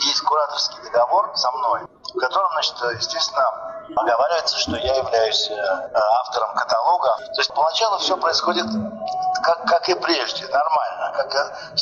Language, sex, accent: Russian, male, native